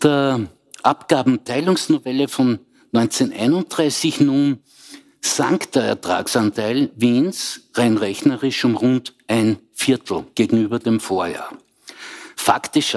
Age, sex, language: 60-79, male, German